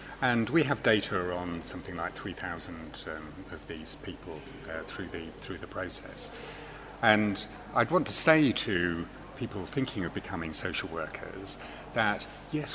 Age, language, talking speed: 40-59, English, 150 wpm